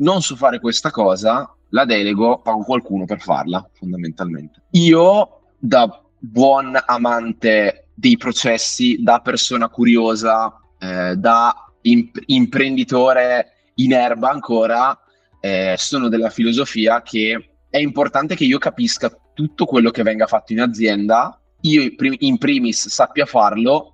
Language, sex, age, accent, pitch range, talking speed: Italian, male, 20-39, native, 100-140 Hz, 125 wpm